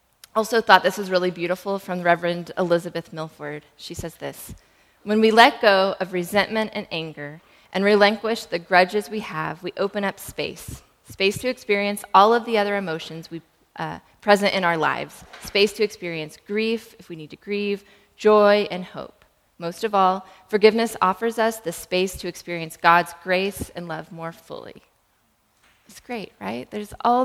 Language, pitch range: English, 175-220 Hz